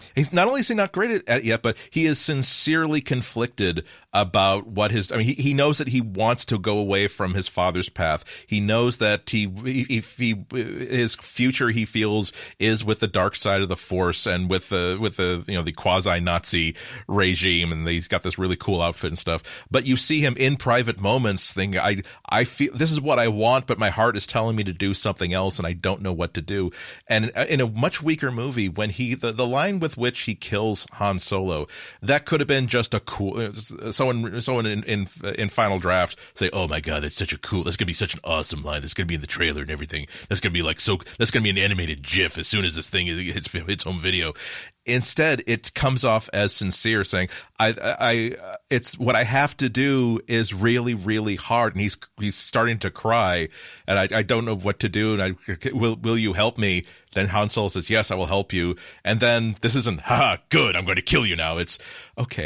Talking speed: 230 wpm